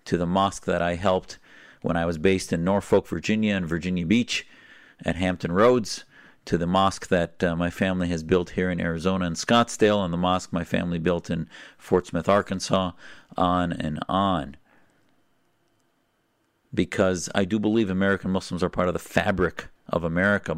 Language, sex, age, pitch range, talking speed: English, male, 50-69, 85-105 Hz, 170 wpm